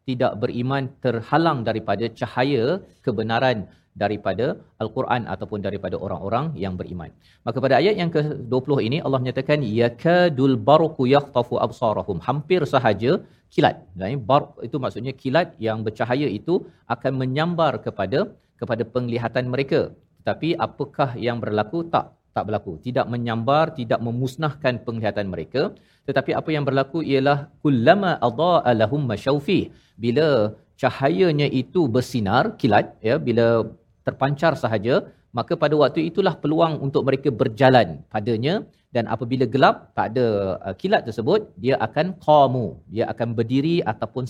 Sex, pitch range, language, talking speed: male, 115-150 Hz, Malayalam, 130 wpm